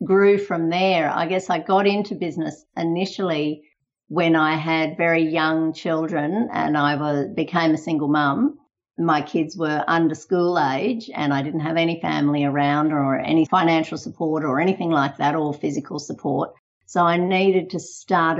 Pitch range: 155-190 Hz